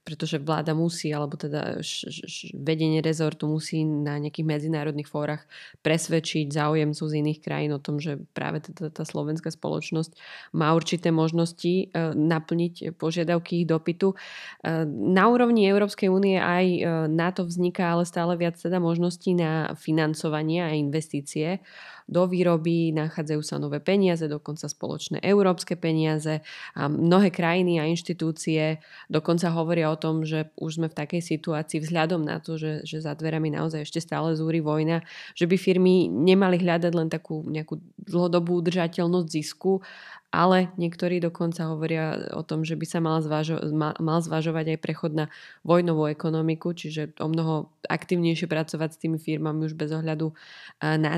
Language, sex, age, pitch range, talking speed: Slovak, female, 20-39, 155-175 Hz, 145 wpm